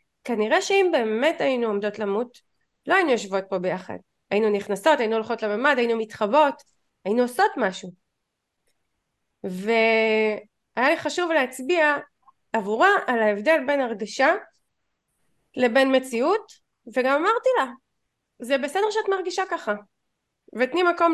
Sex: female